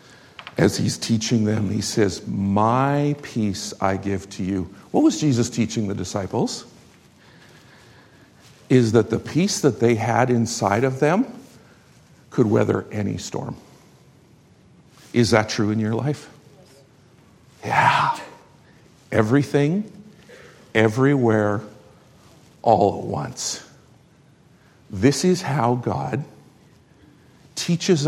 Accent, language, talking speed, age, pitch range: American, English, 105 wpm, 50-69, 110-140 Hz